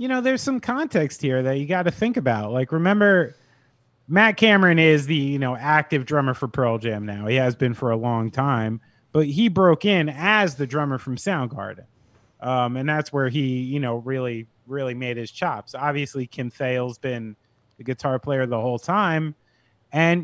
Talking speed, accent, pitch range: 195 wpm, American, 120-160 Hz